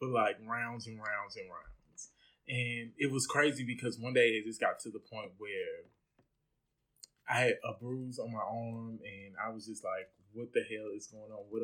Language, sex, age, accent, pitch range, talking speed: English, male, 20-39, American, 110-145 Hz, 205 wpm